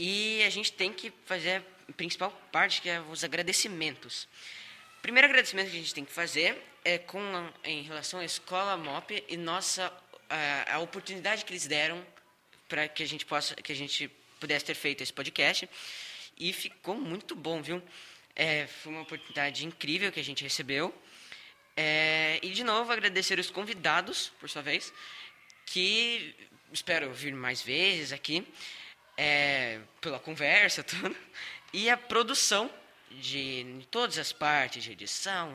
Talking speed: 155 wpm